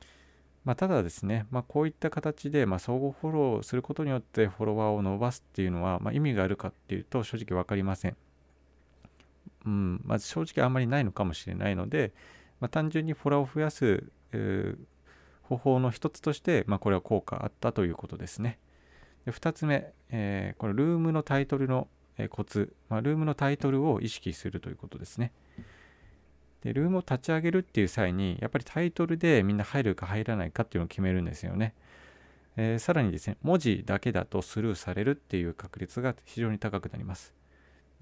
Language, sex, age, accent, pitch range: Japanese, male, 40-59, native, 90-130 Hz